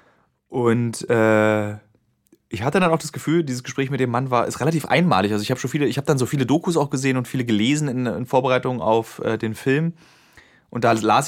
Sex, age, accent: male, 20-39, German